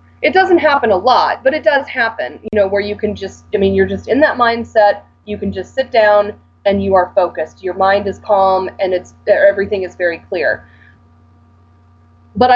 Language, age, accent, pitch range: English, 30-49, American, 175-220 Hz